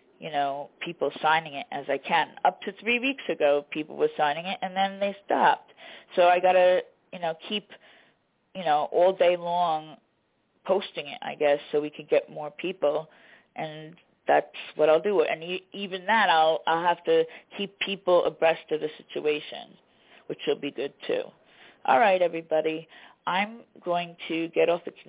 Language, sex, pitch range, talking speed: English, female, 155-195 Hz, 175 wpm